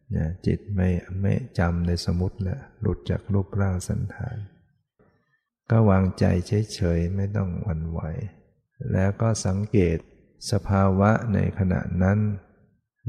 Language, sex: Thai, male